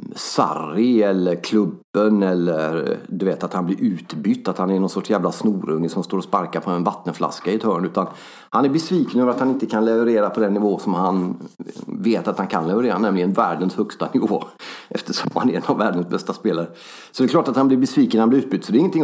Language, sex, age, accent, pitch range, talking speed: Swedish, male, 40-59, native, 95-120 Hz, 235 wpm